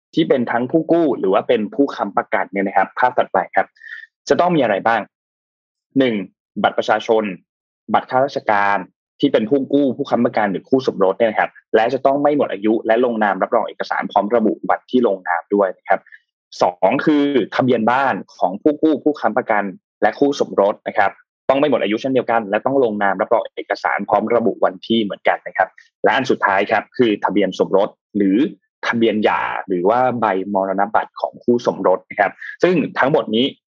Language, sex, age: Thai, male, 20-39